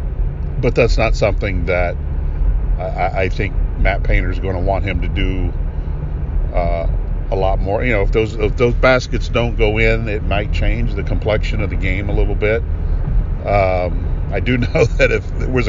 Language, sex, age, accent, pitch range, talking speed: English, male, 50-69, American, 85-105 Hz, 190 wpm